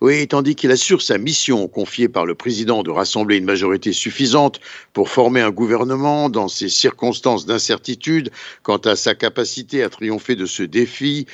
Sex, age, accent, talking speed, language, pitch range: male, 60-79, French, 170 wpm, Italian, 110-140 Hz